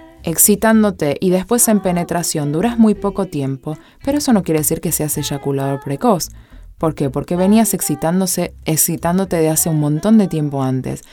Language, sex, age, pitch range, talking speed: Spanish, female, 20-39, 160-210 Hz, 165 wpm